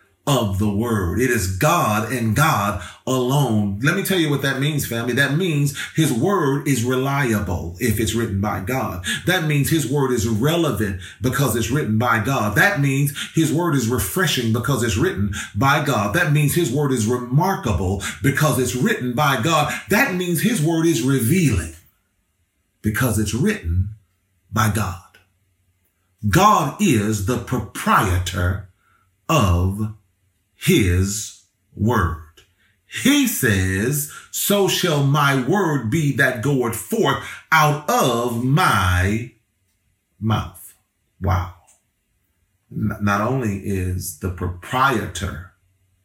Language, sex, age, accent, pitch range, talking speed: English, male, 40-59, American, 95-140 Hz, 130 wpm